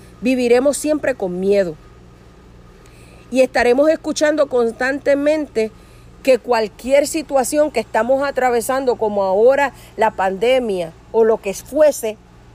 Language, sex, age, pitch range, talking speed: Spanish, female, 50-69, 200-280 Hz, 105 wpm